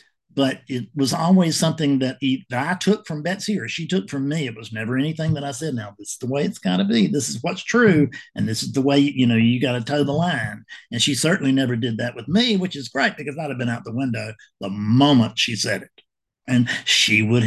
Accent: American